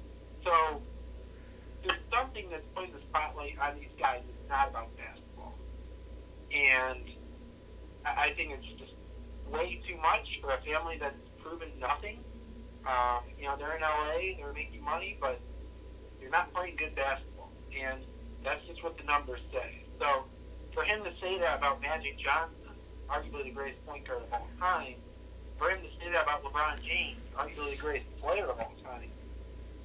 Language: English